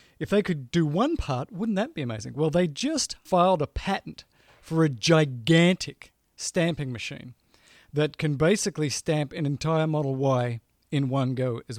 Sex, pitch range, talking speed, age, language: male, 135-170 Hz, 170 wpm, 40-59, English